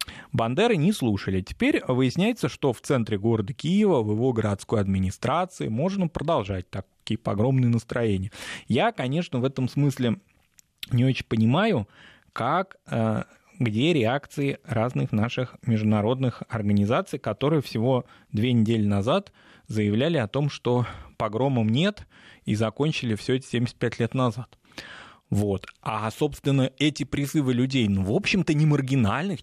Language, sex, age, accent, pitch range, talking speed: Russian, male, 20-39, native, 105-145 Hz, 125 wpm